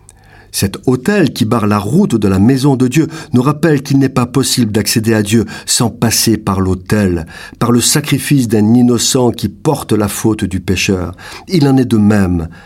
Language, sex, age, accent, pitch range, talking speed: French, male, 50-69, French, 100-135 Hz, 190 wpm